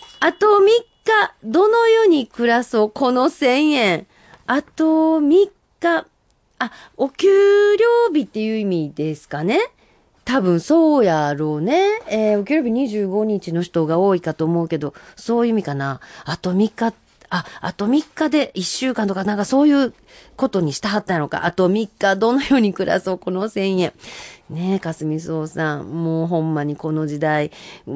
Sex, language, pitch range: female, Japanese, 165-270 Hz